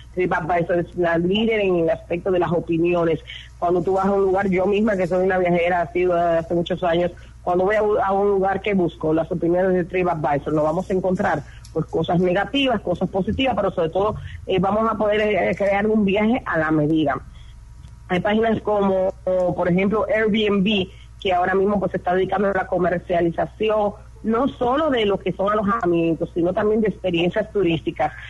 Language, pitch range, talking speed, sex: Spanish, 175-205 Hz, 195 wpm, female